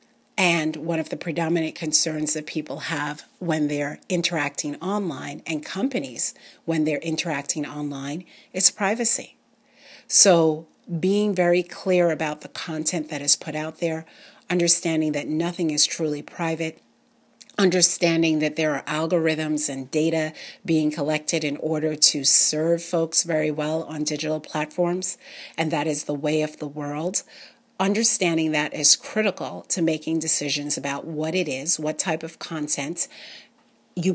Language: English